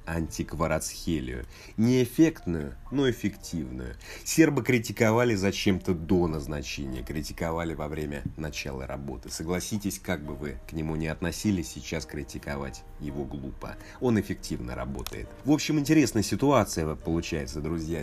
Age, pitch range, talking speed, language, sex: 30-49, 75-100 Hz, 115 wpm, Russian, male